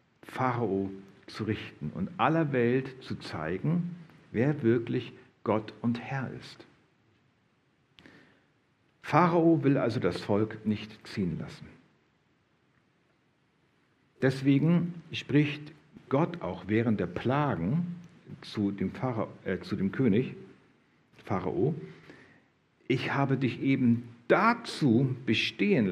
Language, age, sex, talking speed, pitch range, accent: German, 60-79, male, 95 wpm, 110-155 Hz, German